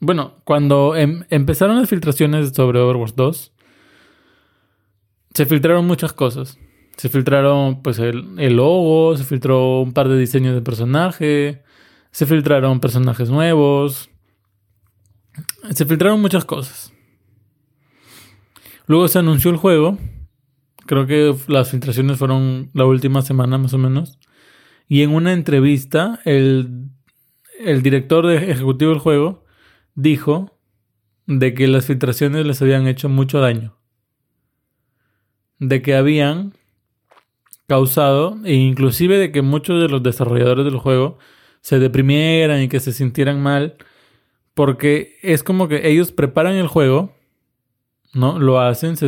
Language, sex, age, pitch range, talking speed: Spanish, male, 20-39, 130-155 Hz, 125 wpm